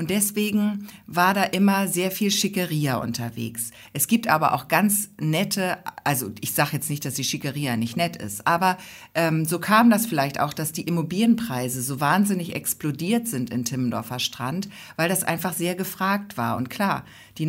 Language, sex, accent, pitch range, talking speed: German, female, German, 150-195 Hz, 180 wpm